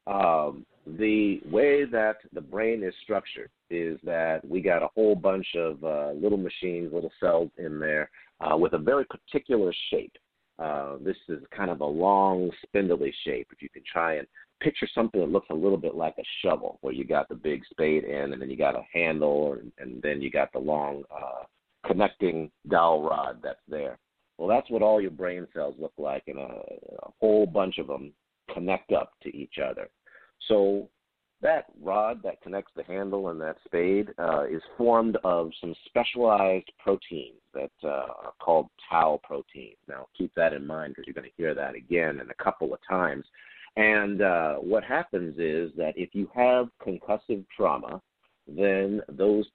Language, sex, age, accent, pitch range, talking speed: English, male, 50-69, American, 80-105 Hz, 185 wpm